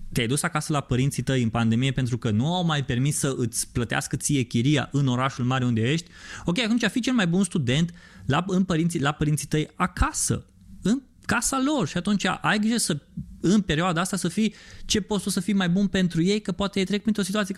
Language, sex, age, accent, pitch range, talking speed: Romanian, male, 20-39, native, 115-185 Hz, 220 wpm